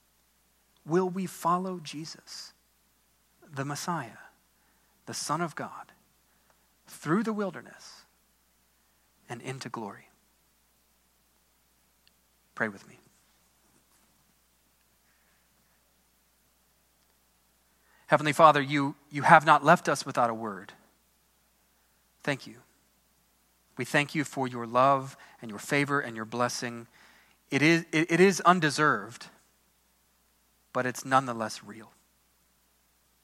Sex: male